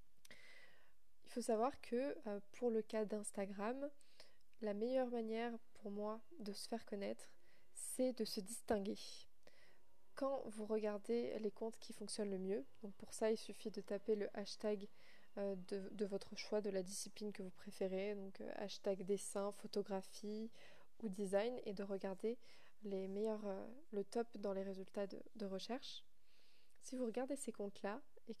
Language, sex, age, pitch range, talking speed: French, female, 20-39, 200-235 Hz, 155 wpm